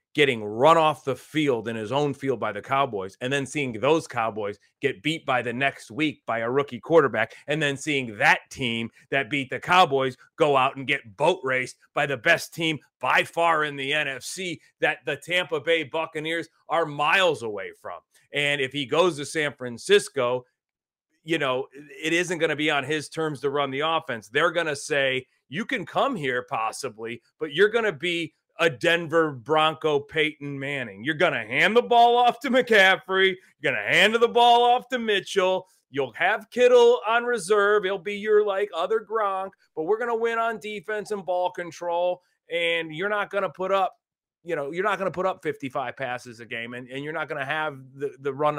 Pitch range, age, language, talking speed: 140-190 Hz, 30-49, English, 205 wpm